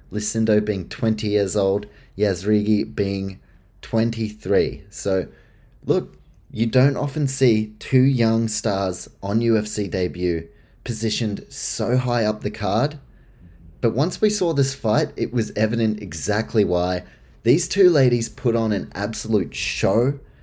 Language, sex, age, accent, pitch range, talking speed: English, male, 20-39, Australian, 95-125 Hz, 130 wpm